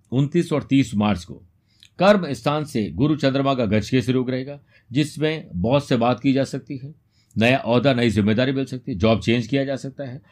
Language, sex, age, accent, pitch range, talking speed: Hindi, male, 50-69, native, 110-155 Hz, 210 wpm